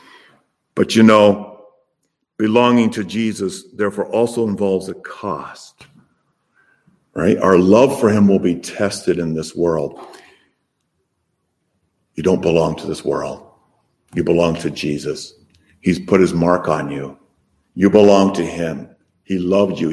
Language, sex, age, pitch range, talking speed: English, male, 50-69, 95-130 Hz, 135 wpm